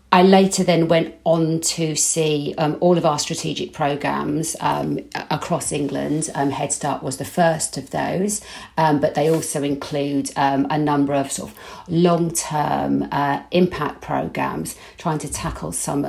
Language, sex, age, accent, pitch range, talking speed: English, female, 50-69, British, 140-170 Hz, 155 wpm